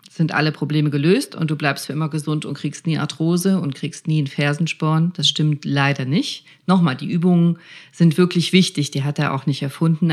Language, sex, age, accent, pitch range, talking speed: German, female, 40-59, German, 150-180 Hz, 210 wpm